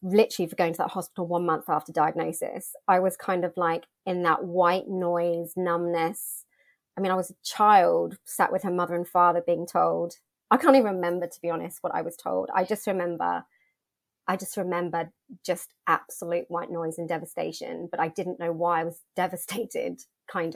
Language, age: English, 30-49